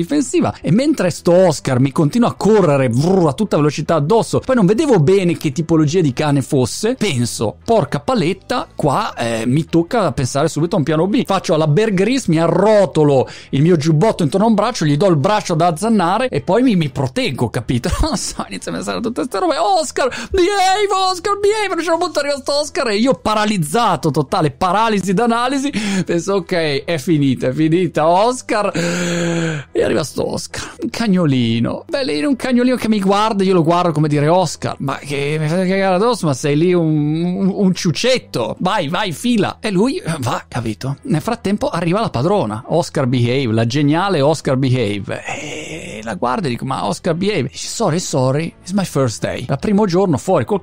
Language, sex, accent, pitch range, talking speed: Italian, male, native, 145-215 Hz, 195 wpm